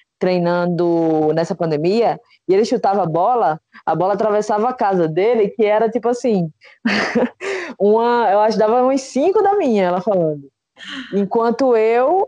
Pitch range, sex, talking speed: 165-220 Hz, female, 150 wpm